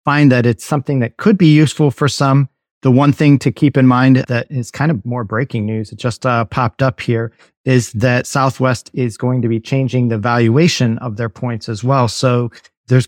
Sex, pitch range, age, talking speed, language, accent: male, 110-130 Hz, 40-59, 215 wpm, English, American